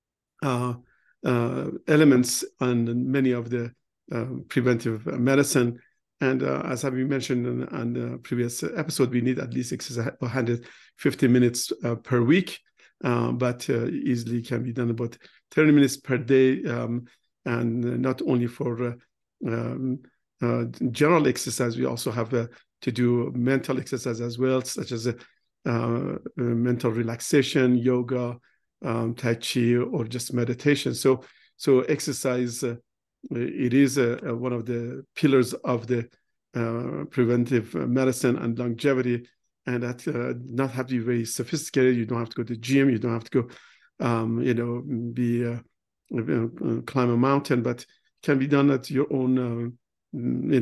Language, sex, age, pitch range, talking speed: English, male, 50-69, 120-130 Hz, 155 wpm